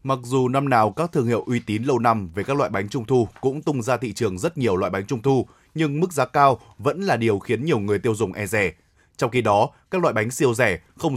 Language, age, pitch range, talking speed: Vietnamese, 20-39, 115-150 Hz, 275 wpm